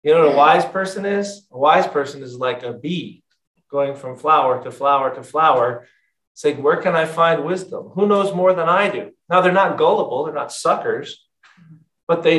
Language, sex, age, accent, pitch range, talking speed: English, male, 40-59, American, 150-200 Hz, 205 wpm